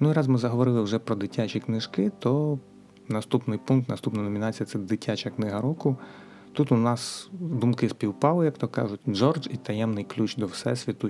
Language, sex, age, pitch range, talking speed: Ukrainian, male, 30-49, 100-130 Hz, 180 wpm